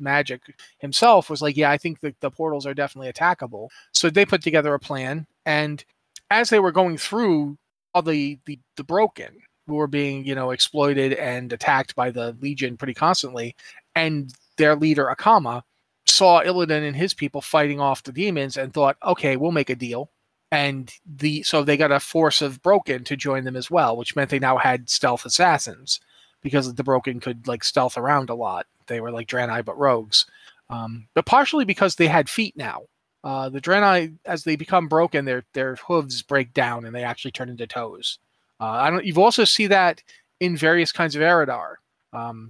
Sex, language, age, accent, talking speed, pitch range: male, English, 30-49, American, 195 wpm, 130-165 Hz